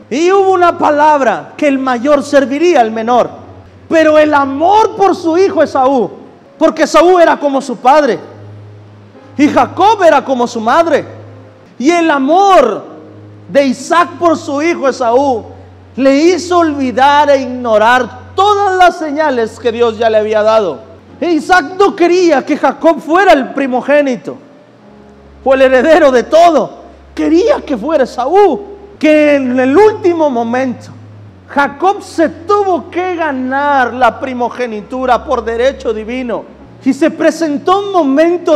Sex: male